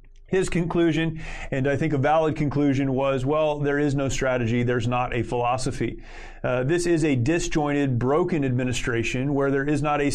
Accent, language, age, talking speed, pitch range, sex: American, English, 30-49, 175 wpm, 135-160 Hz, male